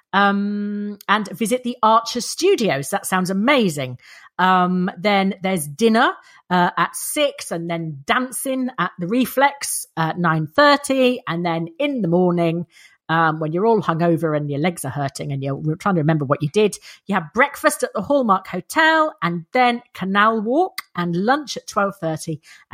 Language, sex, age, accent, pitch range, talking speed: English, female, 40-59, British, 160-230 Hz, 165 wpm